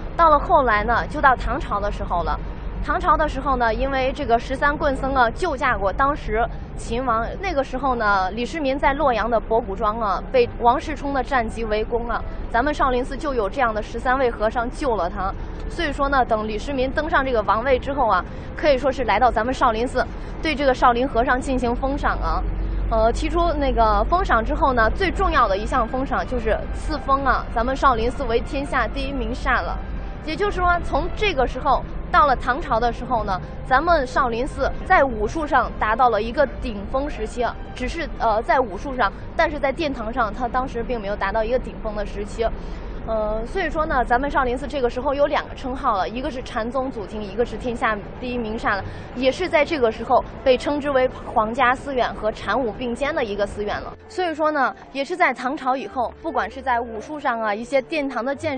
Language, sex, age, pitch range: Chinese, female, 20-39, 230-285 Hz